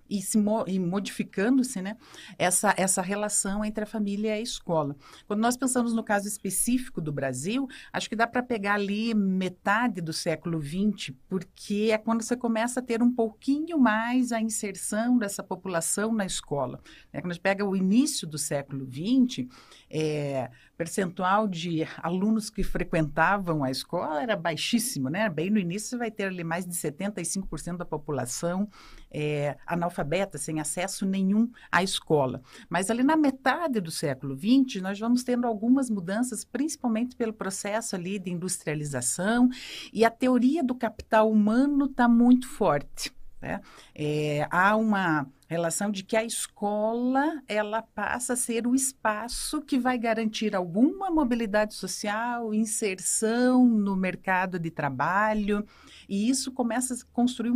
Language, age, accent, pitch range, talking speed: Portuguese, 50-69, Brazilian, 180-240 Hz, 150 wpm